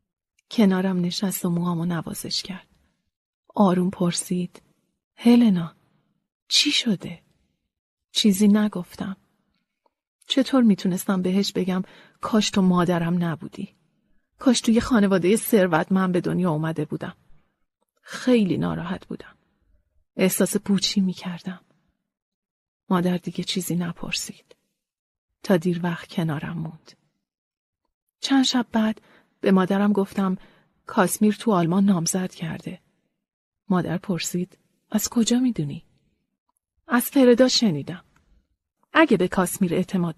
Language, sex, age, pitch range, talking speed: Persian, female, 30-49, 180-220 Hz, 105 wpm